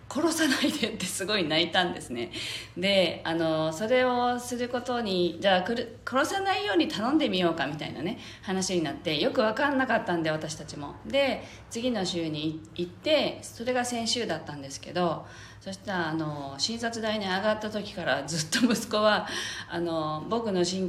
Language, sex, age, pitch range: Japanese, female, 40-59, 170-245 Hz